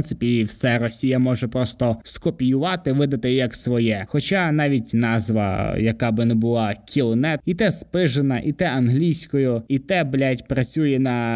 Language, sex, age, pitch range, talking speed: Ukrainian, male, 20-39, 115-155 Hz, 160 wpm